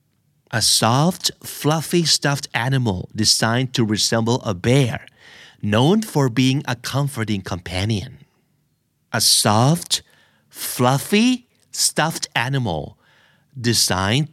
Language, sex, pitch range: Thai, male, 105-145 Hz